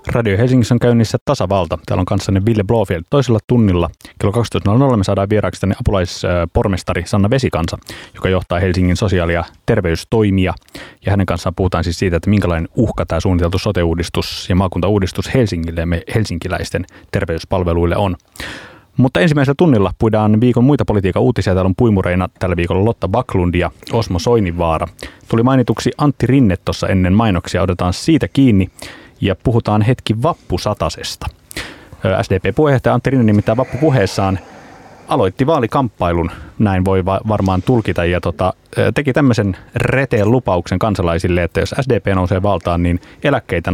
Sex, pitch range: male, 90-115 Hz